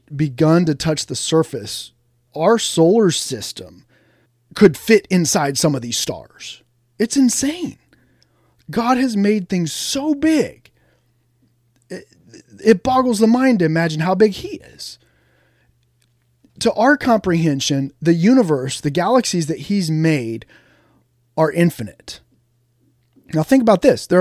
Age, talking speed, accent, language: 30-49, 125 wpm, American, English